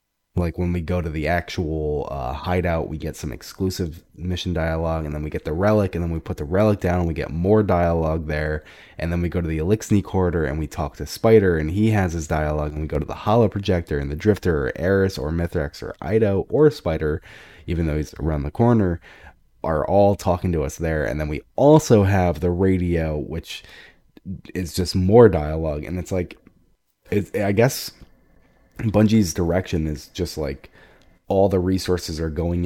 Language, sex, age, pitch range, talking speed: English, male, 20-39, 80-95 Hz, 200 wpm